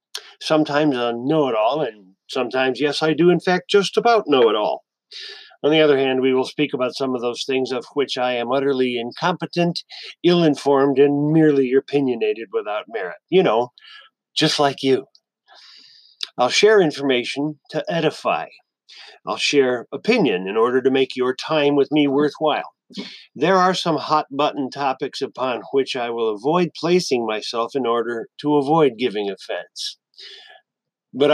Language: English